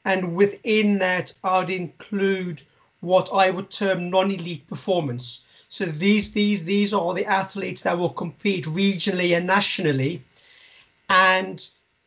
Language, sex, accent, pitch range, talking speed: English, male, British, 180-210 Hz, 130 wpm